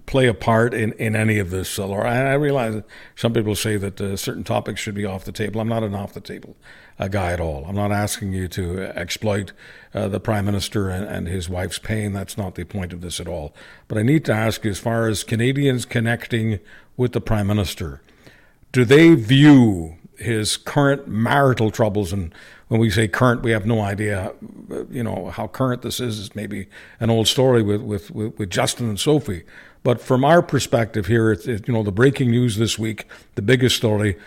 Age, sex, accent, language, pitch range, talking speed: 60-79, male, American, English, 100-125 Hz, 200 wpm